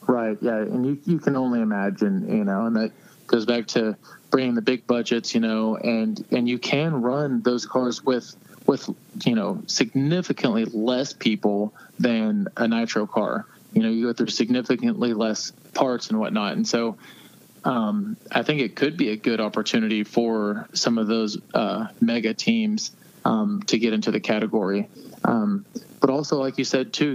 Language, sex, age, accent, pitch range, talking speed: English, male, 20-39, American, 115-140 Hz, 175 wpm